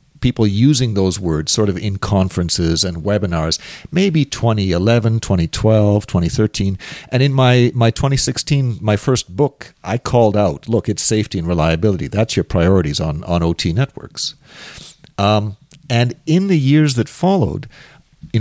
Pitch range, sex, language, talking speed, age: 95-125 Hz, male, English, 145 wpm, 50-69